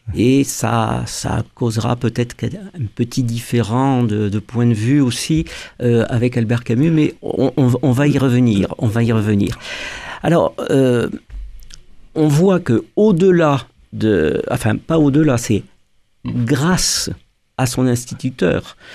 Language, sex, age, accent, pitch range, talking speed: French, male, 50-69, French, 115-155 Hz, 140 wpm